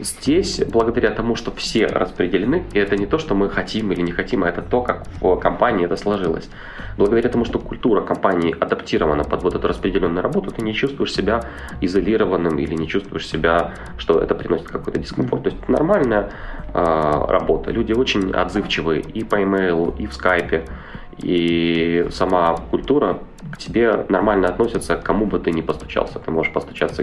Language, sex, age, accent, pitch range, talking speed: Ukrainian, male, 20-39, native, 80-100 Hz, 180 wpm